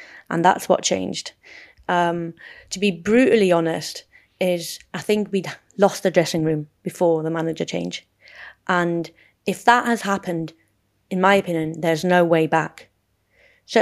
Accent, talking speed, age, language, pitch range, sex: British, 150 wpm, 30-49, English, 170-210 Hz, female